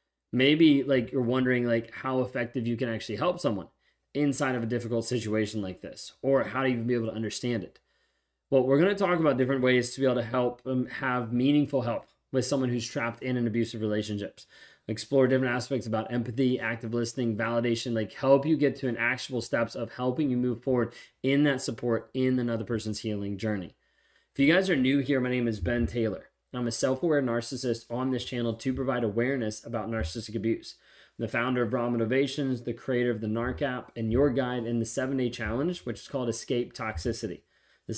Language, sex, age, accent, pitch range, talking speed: English, male, 20-39, American, 115-130 Hz, 210 wpm